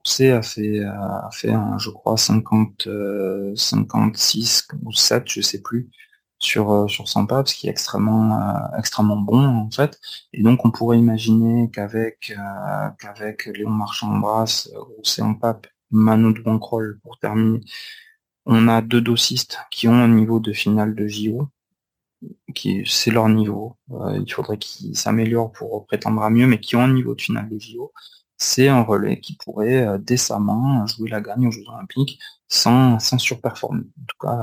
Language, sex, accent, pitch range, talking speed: French, male, French, 110-120 Hz, 175 wpm